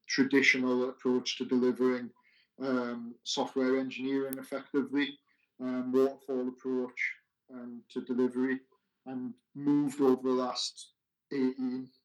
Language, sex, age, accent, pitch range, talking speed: English, male, 30-49, British, 125-135 Hz, 100 wpm